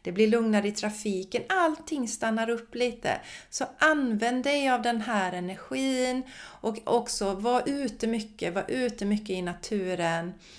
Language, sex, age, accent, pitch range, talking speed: Swedish, female, 40-59, native, 190-245 Hz, 145 wpm